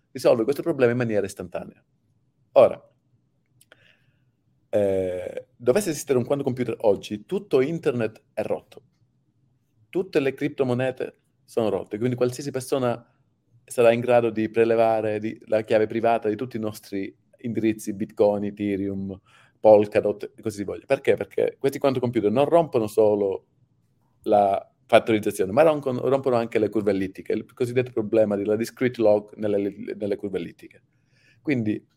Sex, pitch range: male, 110-130 Hz